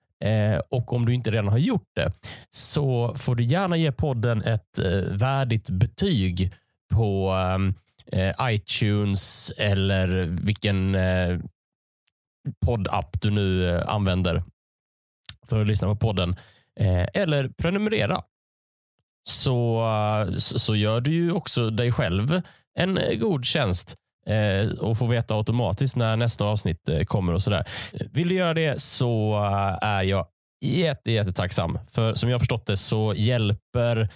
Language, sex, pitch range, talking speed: Swedish, male, 95-120 Hz, 125 wpm